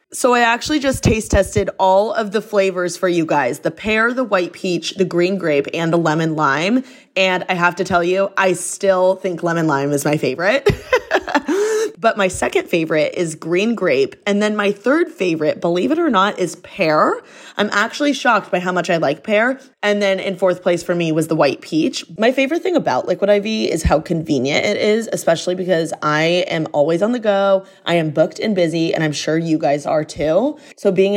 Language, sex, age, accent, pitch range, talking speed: English, female, 20-39, American, 165-210 Hz, 210 wpm